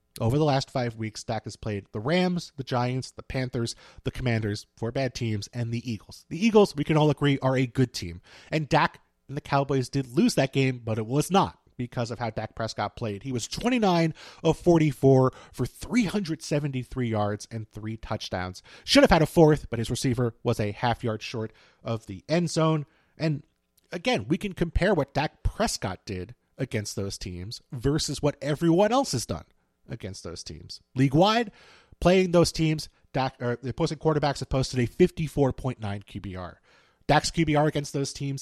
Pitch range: 115-160 Hz